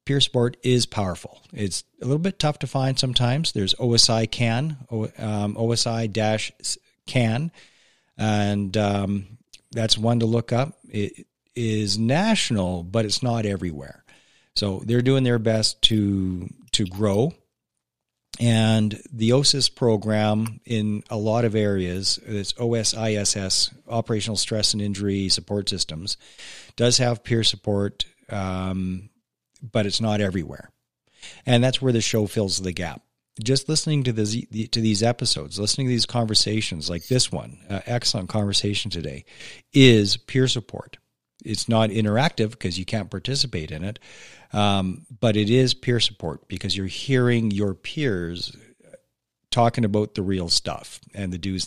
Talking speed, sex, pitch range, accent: 145 wpm, male, 100-120 Hz, American